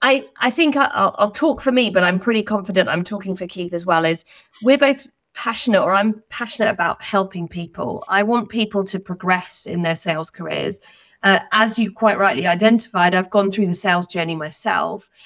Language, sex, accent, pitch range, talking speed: English, female, British, 185-215 Hz, 195 wpm